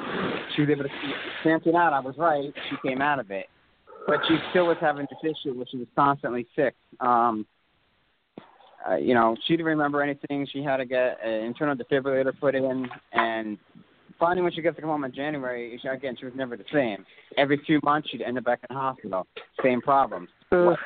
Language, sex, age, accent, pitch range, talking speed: English, male, 30-49, American, 120-150 Hz, 215 wpm